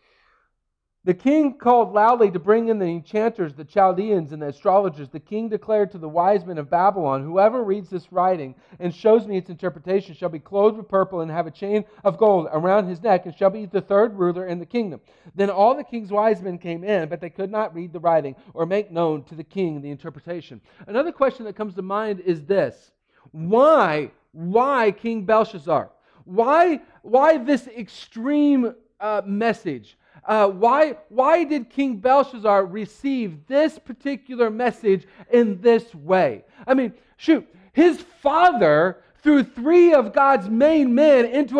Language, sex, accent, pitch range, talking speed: English, male, American, 165-235 Hz, 175 wpm